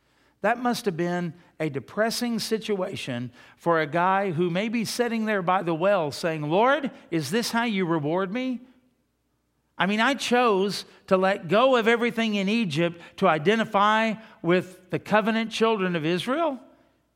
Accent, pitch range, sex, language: American, 175-240 Hz, male, English